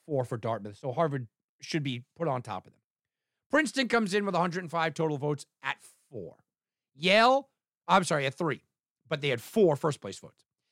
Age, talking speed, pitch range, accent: 40-59, 180 wpm, 145-205 Hz, American